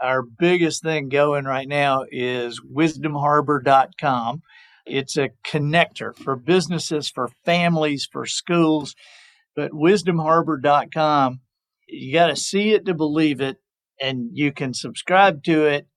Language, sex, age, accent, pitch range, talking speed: English, male, 50-69, American, 135-170 Hz, 125 wpm